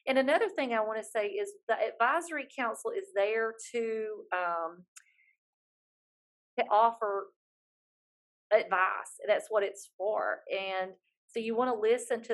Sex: female